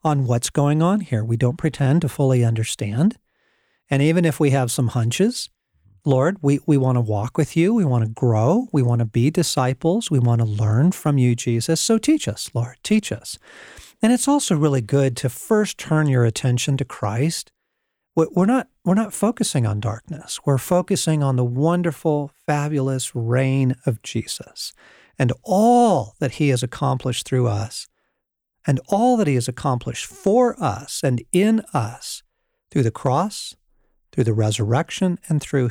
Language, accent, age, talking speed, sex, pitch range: English, American, 40-59, 175 wpm, male, 125-165 Hz